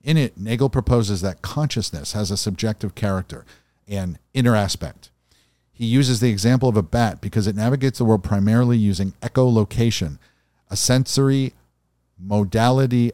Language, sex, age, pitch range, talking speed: English, male, 50-69, 95-120 Hz, 140 wpm